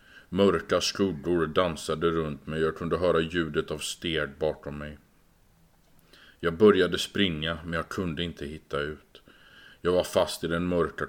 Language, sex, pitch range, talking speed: Swedish, male, 80-95 Hz, 155 wpm